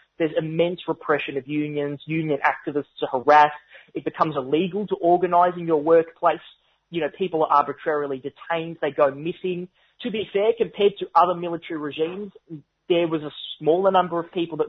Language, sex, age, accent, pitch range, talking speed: English, male, 20-39, Australian, 145-175 Hz, 170 wpm